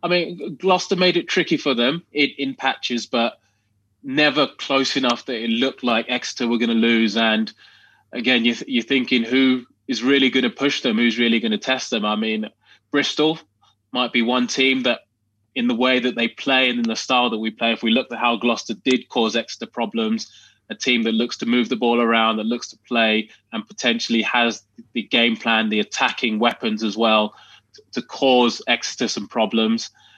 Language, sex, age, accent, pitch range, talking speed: English, male, 20-39, British, 110-130 Hz, 205 wpm